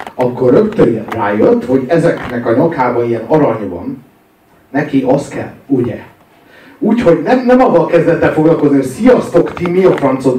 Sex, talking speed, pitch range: male, 145 wpm, 125-205 Hz